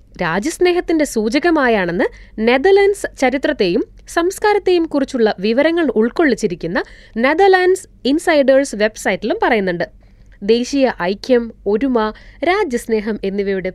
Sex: female